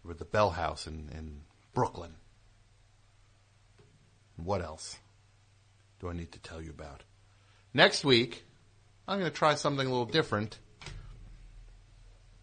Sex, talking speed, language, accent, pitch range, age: male, 125 wpm, English, American, 105-120 Hz, 50-69